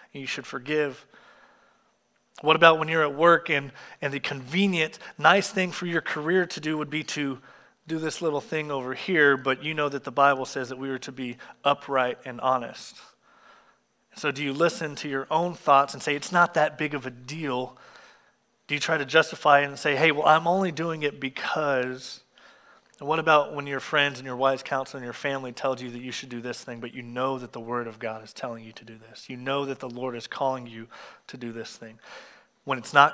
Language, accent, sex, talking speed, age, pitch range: English, American, male, 225 wpm, 30-49, 125-150 Hz